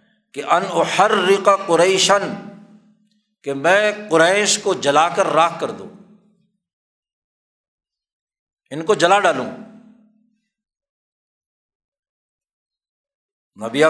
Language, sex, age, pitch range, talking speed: Urdu, male, 60-79, 165-220 Hz, 80 wpm